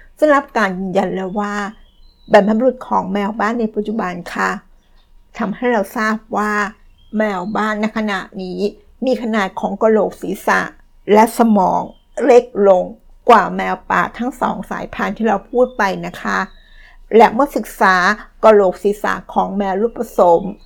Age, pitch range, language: 60-79, 195-230 Hz, Thai